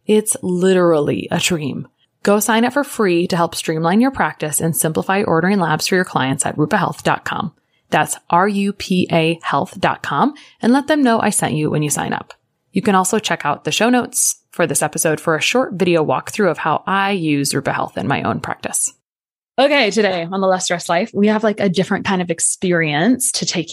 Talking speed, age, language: 210 wpm, 20-39, English